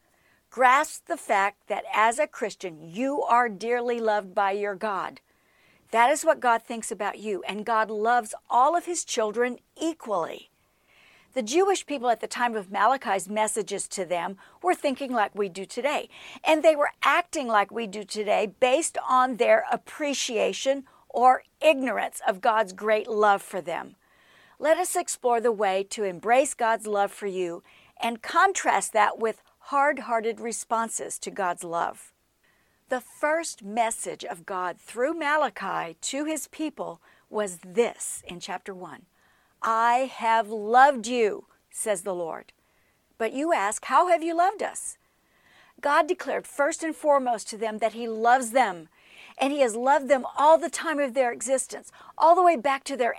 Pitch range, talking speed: 215-285 Hz, 160 wpm